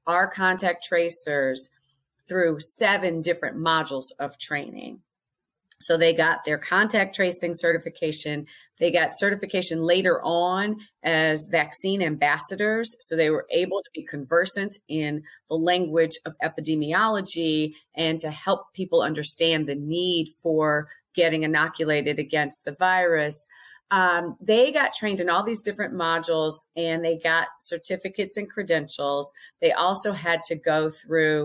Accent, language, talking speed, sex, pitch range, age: American, English, 135 wpm, female, 160-200 Hz, 40-59